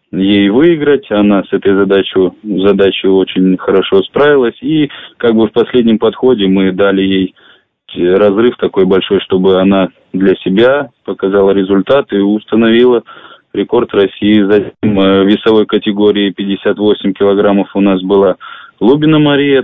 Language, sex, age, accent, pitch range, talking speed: Russian, male, 20-39, native, 95-110 Hz, 130 wpm